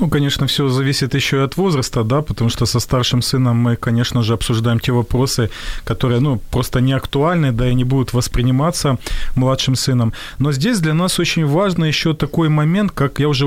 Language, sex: Ukrainian, male